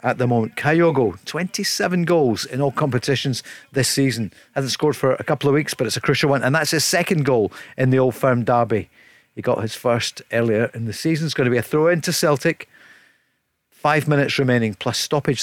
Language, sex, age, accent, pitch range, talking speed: English, male, 40-59, British, 130-165 Hz, 215 wpm